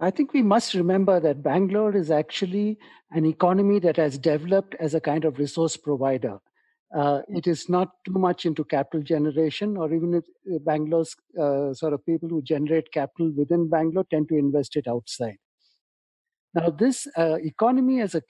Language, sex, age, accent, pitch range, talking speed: English, male, 50-69, Indian, 145-180 Hz, 175 wpm